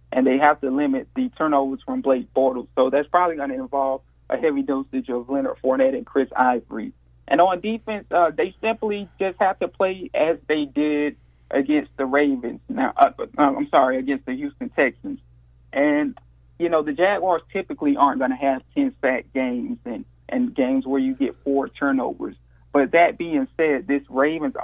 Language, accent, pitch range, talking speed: English, American, 130-165 Hz, 185 wpm